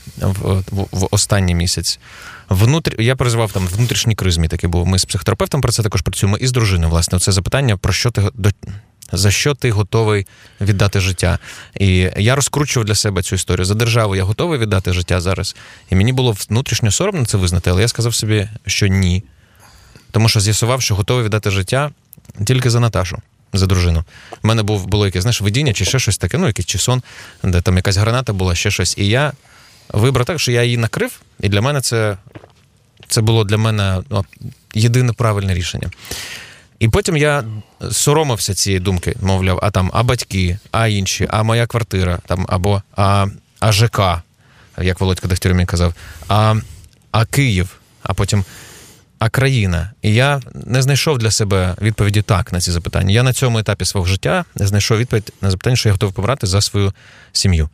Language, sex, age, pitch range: Ukrainian, male, 20-39, 95-120 Hz